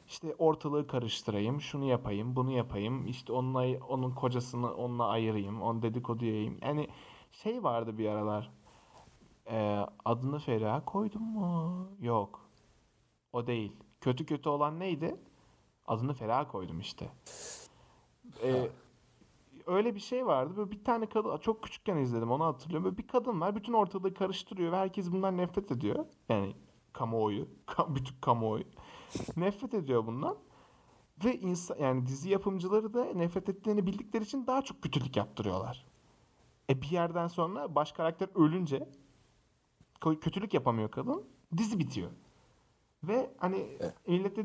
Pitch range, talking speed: 120-185 Hz, 135 wpm